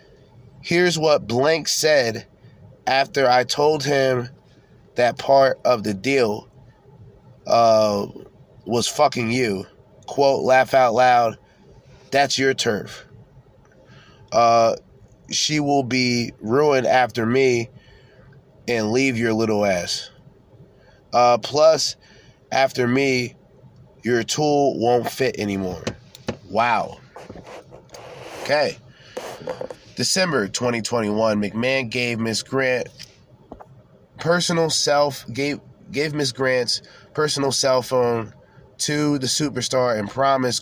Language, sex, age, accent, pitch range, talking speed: English, male, 20-39, American, 120-135 Hz, 100 wpm